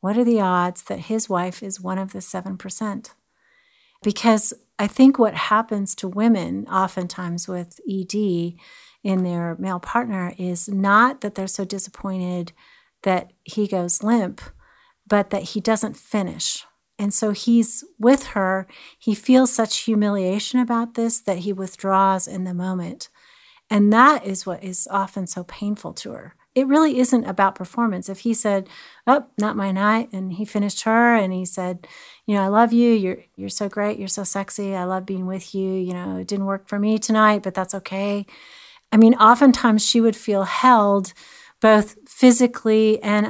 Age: 40-59